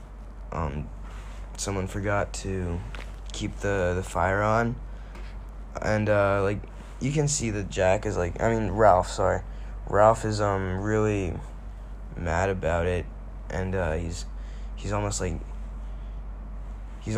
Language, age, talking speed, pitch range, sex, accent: English, 20-39, 130 wpm, 90-110 Hz, male, American